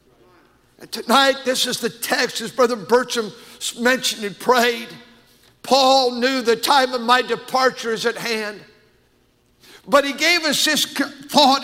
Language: English